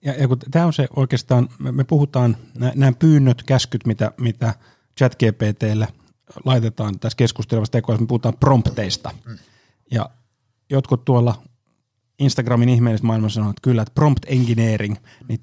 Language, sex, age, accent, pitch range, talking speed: Finnish, male, 30-49, native, 115-135 Hz, 130 wpm